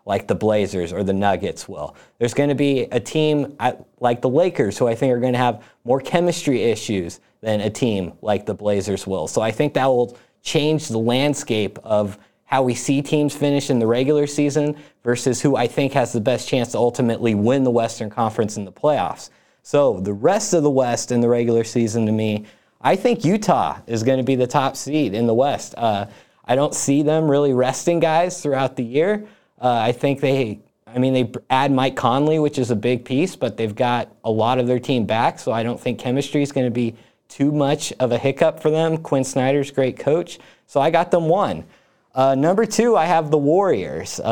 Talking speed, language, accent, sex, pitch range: 215 wpm, English, American, male, 120-145 Hz